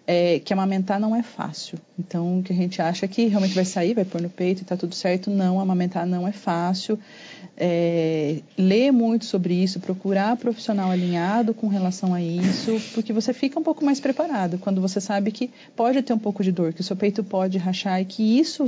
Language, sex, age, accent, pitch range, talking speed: Portuguese, female, 30-49, Brazilian, 190-235 Hz, 215 wpm